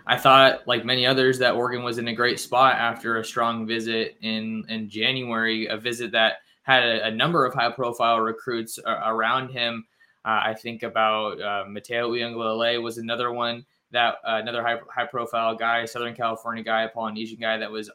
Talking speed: 190 wpm